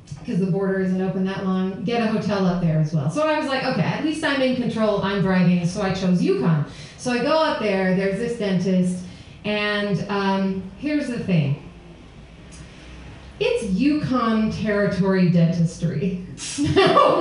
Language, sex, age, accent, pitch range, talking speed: English, female, 30-49, American, 175-240 Hz, 165 wpm